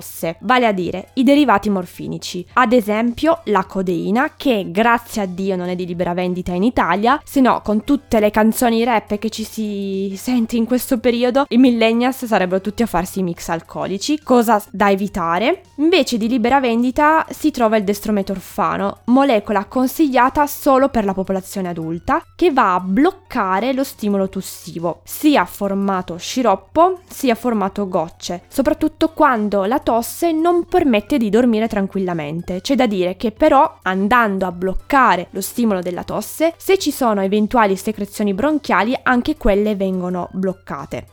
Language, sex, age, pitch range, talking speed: Italian, female, 20-39, 190-255 Hz, 155 wpm